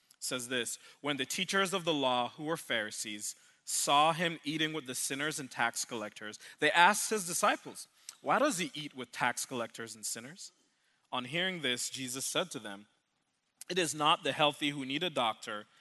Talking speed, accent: 185 wpm, American